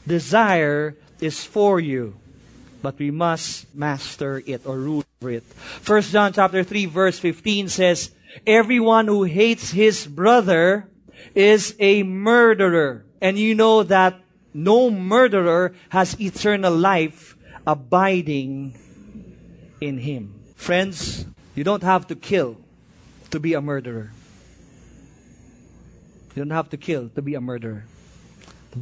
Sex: male